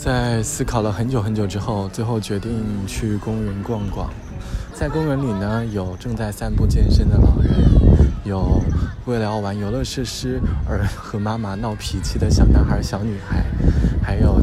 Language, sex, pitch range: Chinese, male, 100-120 Hz